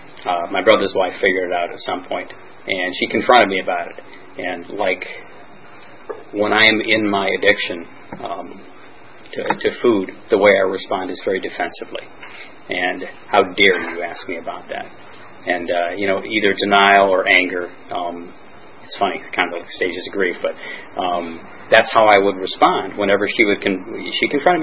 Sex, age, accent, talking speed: male, 40-59, American, 175 wpm